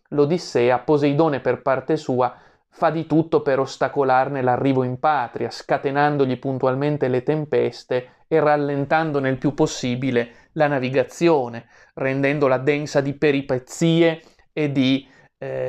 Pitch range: 130-155 Hz